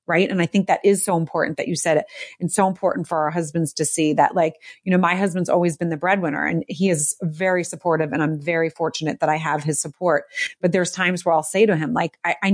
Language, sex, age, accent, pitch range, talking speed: English, female, 30-49, American, 165-195 Hz, 265 wpm